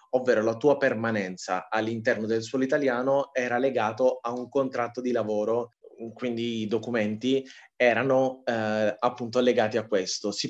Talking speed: 145 wpm